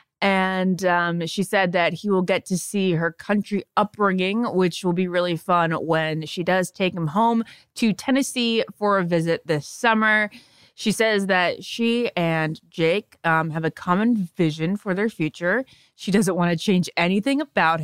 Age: 20-39